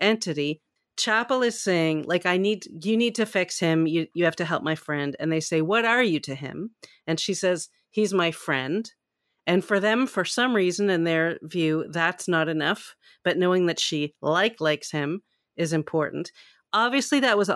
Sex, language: female, English